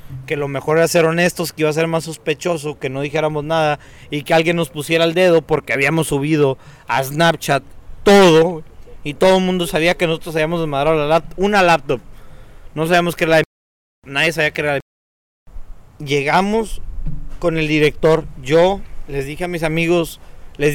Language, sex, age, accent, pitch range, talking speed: Spanish, male, 30-49, Mexican, 140-170 Hz, 180 wpm